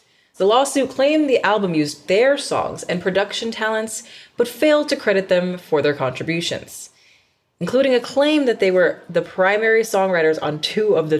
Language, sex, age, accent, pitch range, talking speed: English, female, 20-39, American, 155-230 Hz, 170 wpm